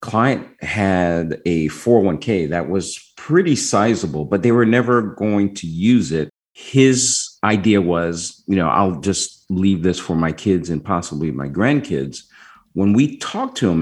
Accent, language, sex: American, English, male